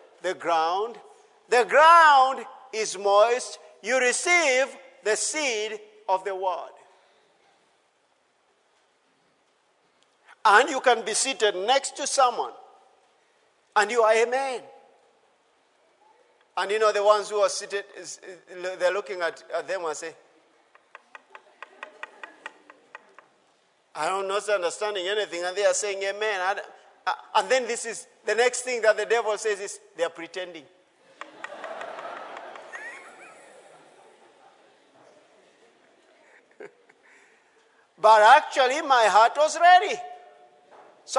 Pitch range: 205-275 Hz